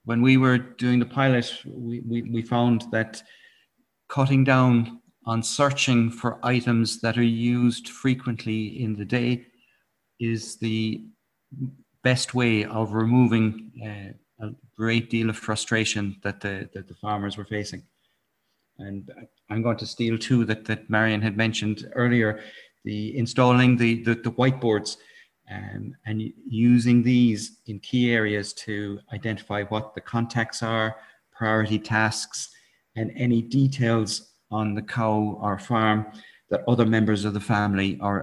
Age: 40-59